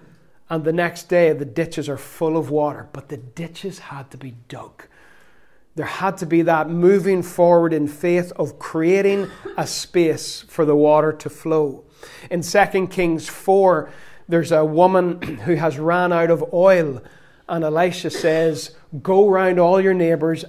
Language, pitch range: English, 150-180 Hz